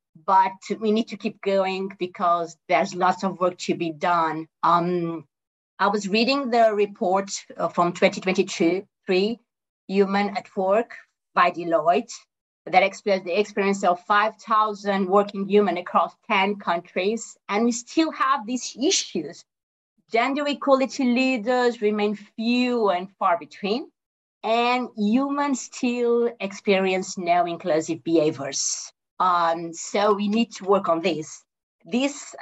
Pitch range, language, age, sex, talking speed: 185-240 Hz, English, 30-49, female, 125 wpm